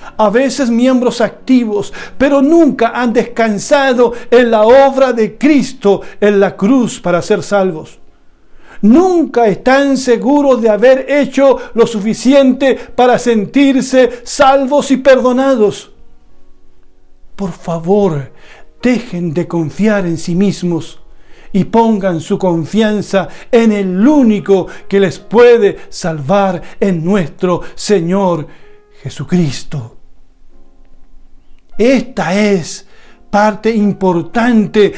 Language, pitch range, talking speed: Spanish, 195-255 Hz, 100 wpm